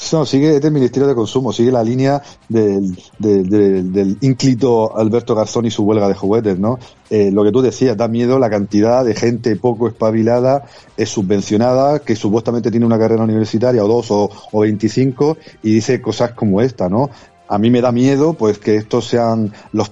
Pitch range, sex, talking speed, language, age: 105-130 Hz, male, 185 wpm, Spanish, 40-59